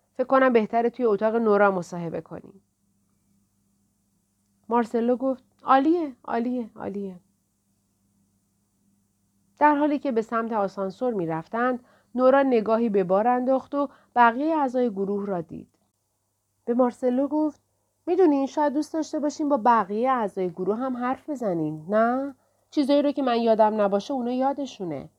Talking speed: 135 wpm